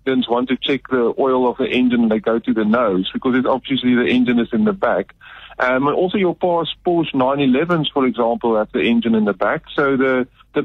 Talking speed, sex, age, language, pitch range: 215 wpm, male, 50-69, English, 120-145 Hz